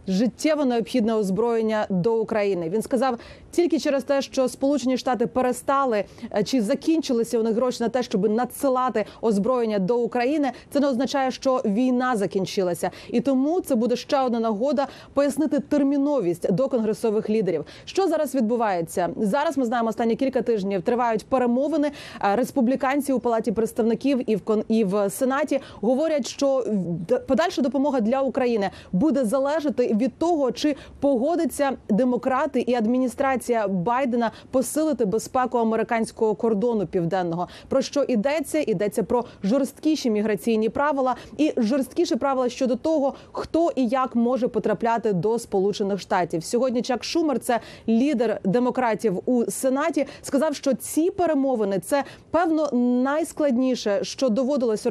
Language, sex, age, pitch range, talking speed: Ukrainian, female, 30-49, 225-275 Hz, 130 wpm